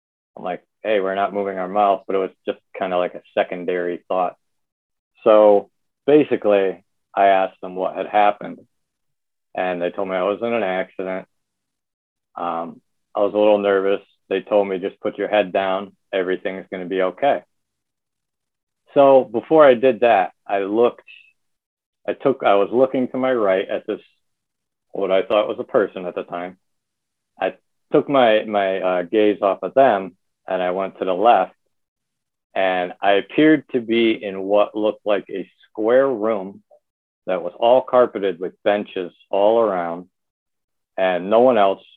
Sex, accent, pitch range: male, American, 95-105 Hz